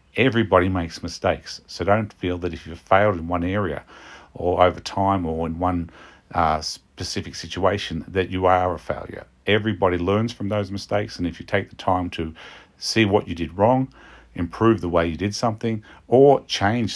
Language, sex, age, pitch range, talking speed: English, male, 50-69, 85-105 Hz, 185 wpm